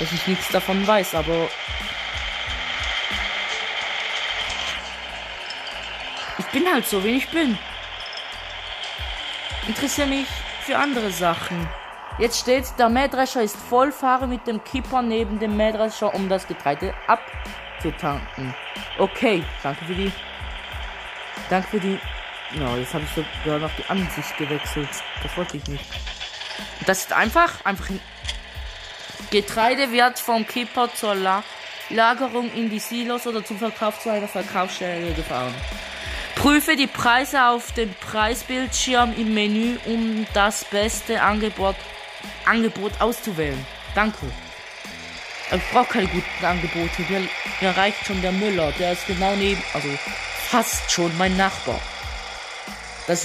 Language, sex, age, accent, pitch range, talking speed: German, female, 20-39, German, 180-235 Hz, 125 wpm